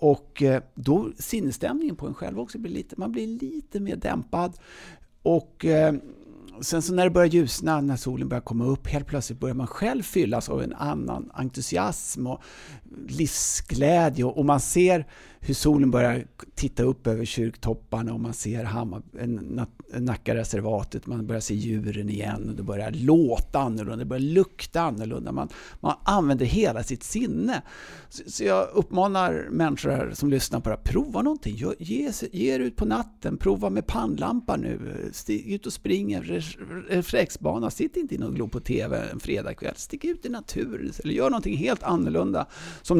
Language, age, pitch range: Swedish, 60-79, 115-175 Hz